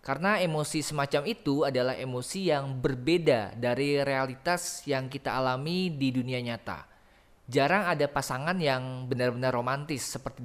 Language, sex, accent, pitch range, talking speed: Indonesian, male, native, 130-160 Hz, 130 wpm